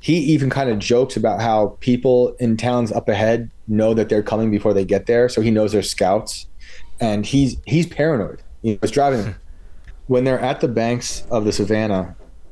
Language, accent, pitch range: English, American, 100-125 Hz